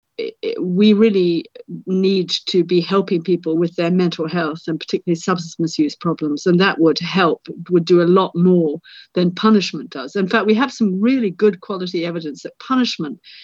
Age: 50-69